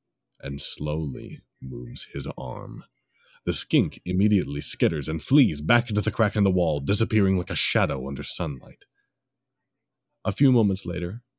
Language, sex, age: English, male, 30-49